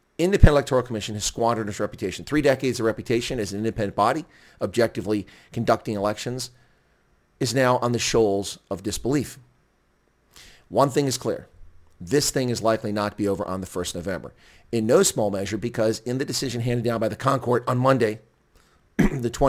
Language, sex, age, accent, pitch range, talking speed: English, male, 40-59, American, 105-130 Hz, 180 wpm